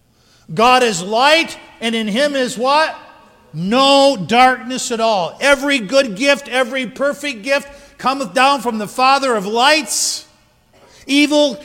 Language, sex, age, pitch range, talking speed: English, male, 50-69, 175-265 Hz, 135 wpm